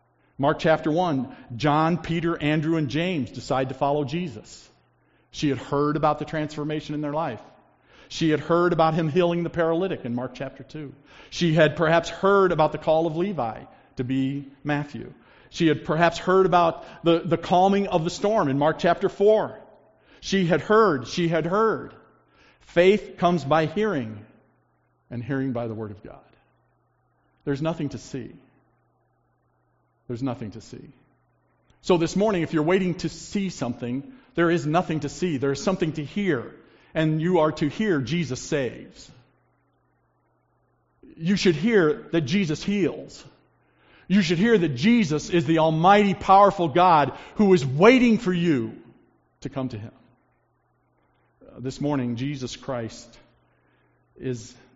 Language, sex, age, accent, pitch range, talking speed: English, male, 50-69, American, 135-175 Hz, 155 wpm